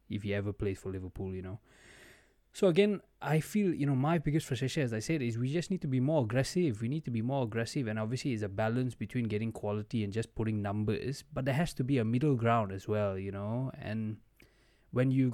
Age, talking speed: 20-39, 240 wpm